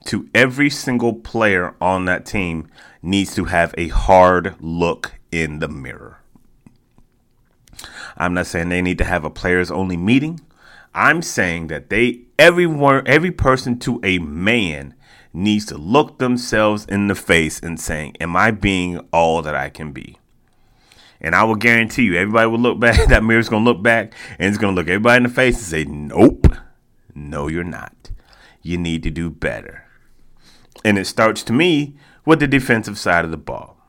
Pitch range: 85-125 Hz